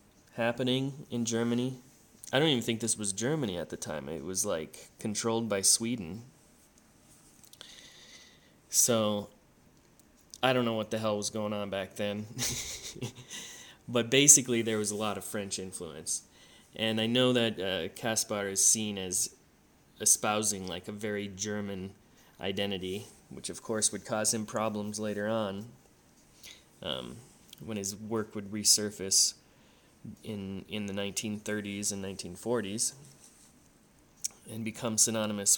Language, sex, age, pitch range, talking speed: English, male, 20-39, 105-120 Hz, 135 wpm